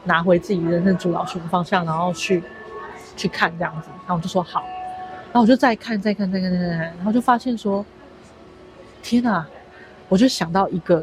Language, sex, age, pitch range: Chinese, female, 30-49, 170-205 Hz